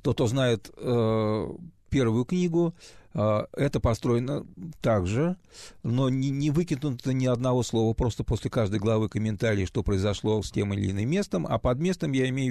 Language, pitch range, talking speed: Russian, 110-145 Hz, 160 wpm